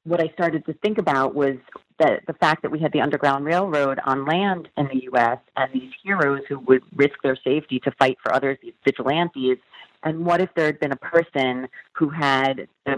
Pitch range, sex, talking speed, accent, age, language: 130-160 Hz, female, 215 wpm, American, 30-49, English